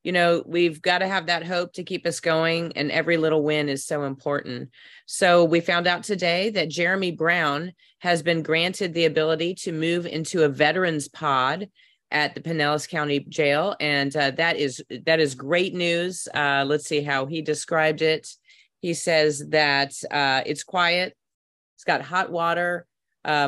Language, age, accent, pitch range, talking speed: English, 30-49, American, 145-170 Hz, 175 wpm